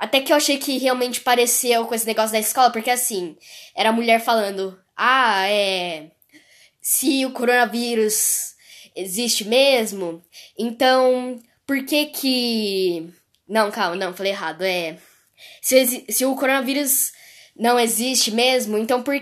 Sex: female